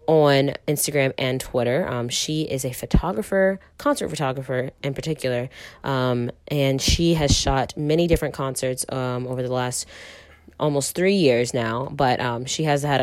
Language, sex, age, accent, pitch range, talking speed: English, female, 20-39, American, 130-160 Hz, 155 wpm